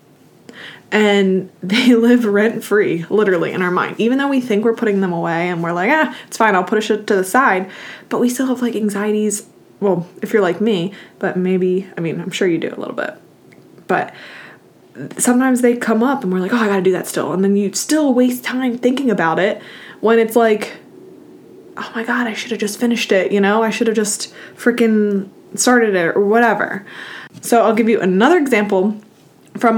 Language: English